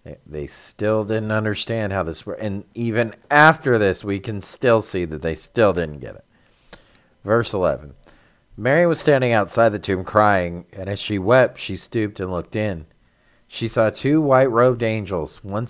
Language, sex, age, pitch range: English, male, 40-59, 90-120 Hz